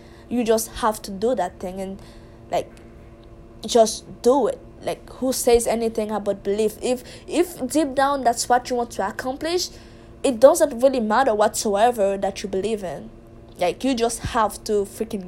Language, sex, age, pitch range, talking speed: English, female, 20-39, 190-240 Hz, 170 wpm